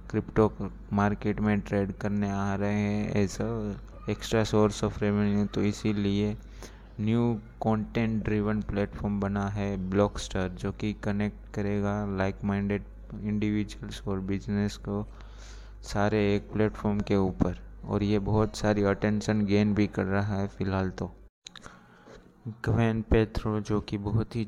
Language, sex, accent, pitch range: Hindi, male, native, 100-110 Hz